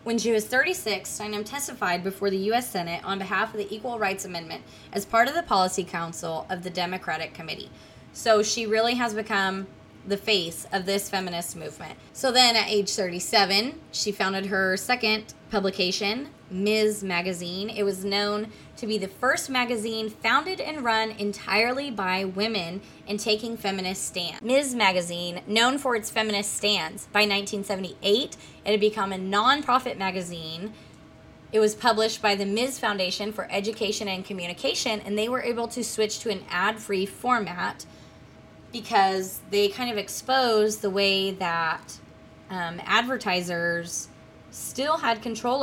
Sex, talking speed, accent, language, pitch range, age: female, 155 wpm, American, English, 190-225 Hz, 20-39